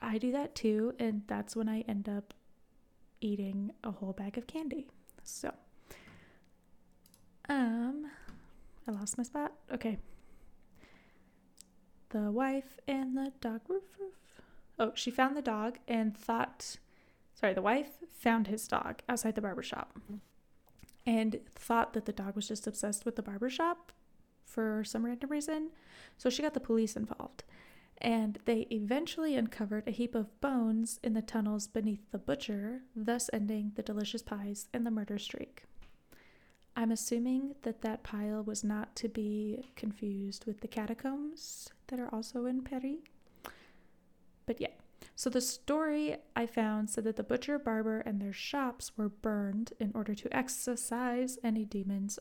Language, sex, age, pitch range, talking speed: English, female, 10-29, 215-255 Hz, 150 wpm